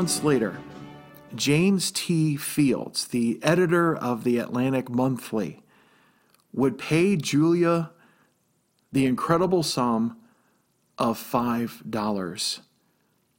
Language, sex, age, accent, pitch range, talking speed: English, male, 40-59, American, 115-155 Hz, 85 wpm